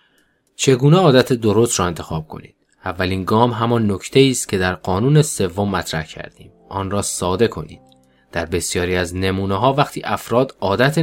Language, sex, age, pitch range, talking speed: Persian, male, 20-39, 90-120 Hz, 165 wpm